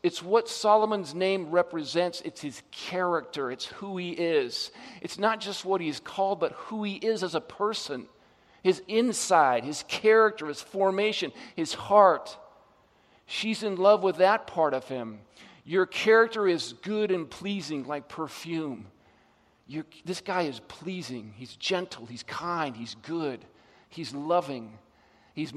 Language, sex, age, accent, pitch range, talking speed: English, male, 50-69, American, 160-210 Hz, 145 wpm